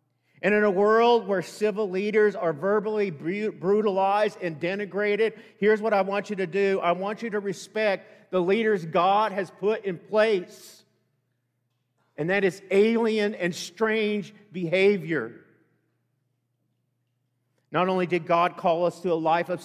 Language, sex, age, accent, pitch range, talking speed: English, male, 50-69, American, 150-195 Hz, 145 wpm